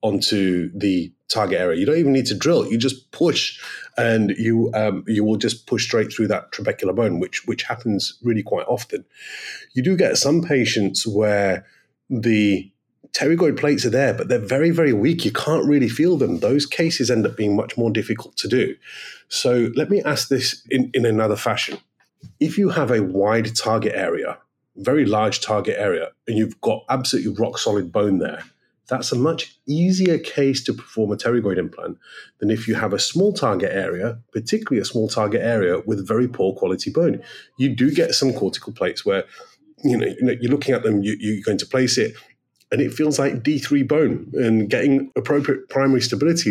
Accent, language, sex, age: British, English, male, 30-49